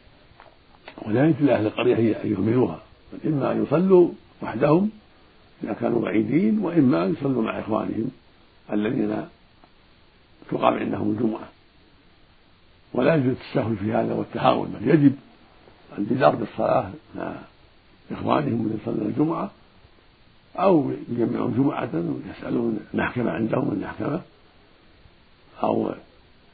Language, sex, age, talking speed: Arabic, male, 60-79, 100 wpm